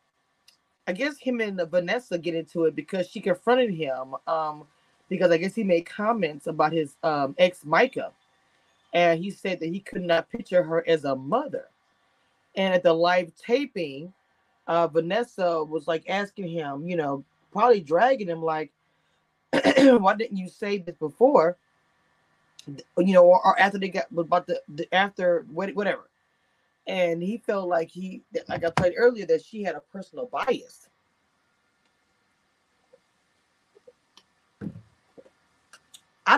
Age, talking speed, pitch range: 20-39, 145 wpm, 155-190 Hz